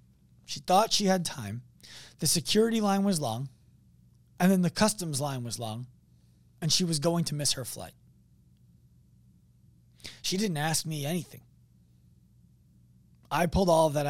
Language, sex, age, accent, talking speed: English, male, 20-39, American, 150 wpm